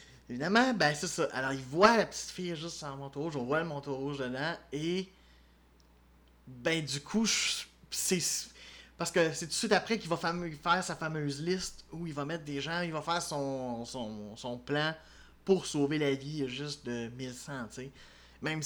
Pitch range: 135-170 Hz